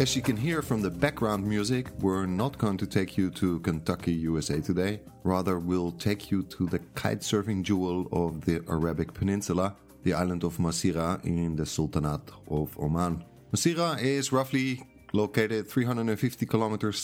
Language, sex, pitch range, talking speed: English, male, 90-115 Hz, 160 wpm